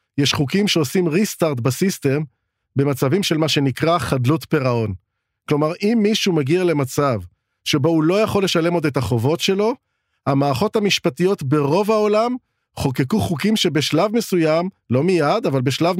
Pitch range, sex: 135-190 Hz, male